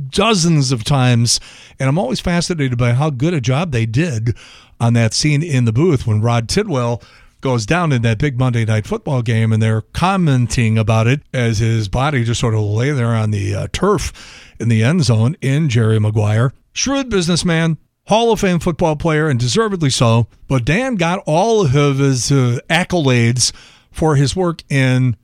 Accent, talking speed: American, 185 wpm